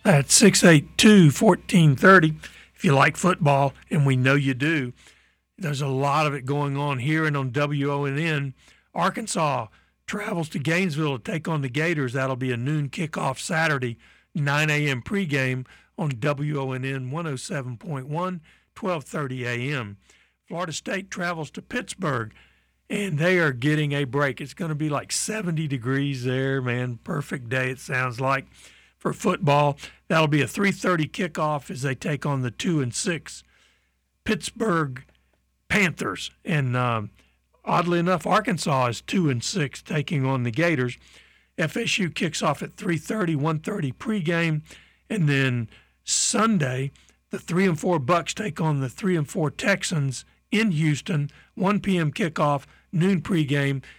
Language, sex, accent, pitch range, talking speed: English, male, American, 135-175 Hz, 145 wpm